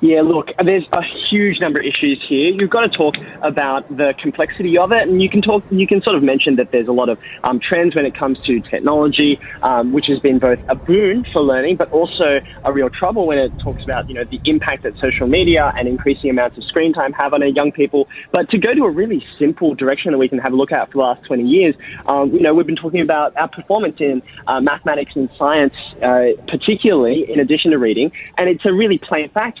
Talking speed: 245 wpm